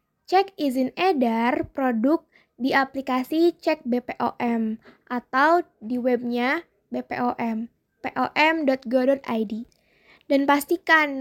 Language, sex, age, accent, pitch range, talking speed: Indonesian, female, 20-39, native, 250-310 Hz, 75 wpm